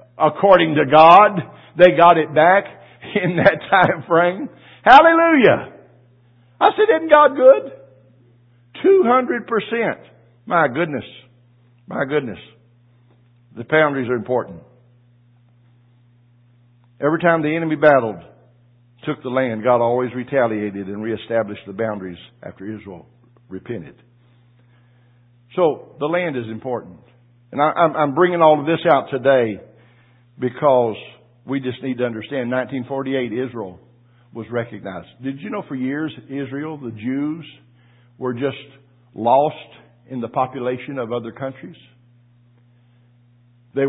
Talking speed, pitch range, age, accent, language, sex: 120 wpm, 120-150 Hz, 60-79, American, English, male